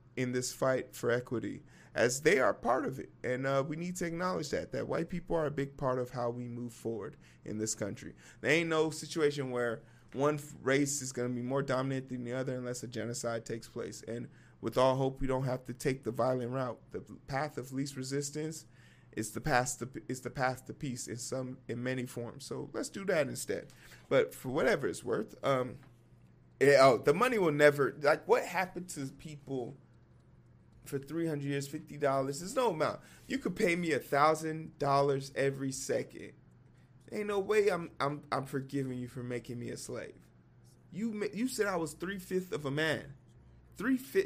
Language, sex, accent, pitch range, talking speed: English, male, American, 125-155 Hz, 200 wpm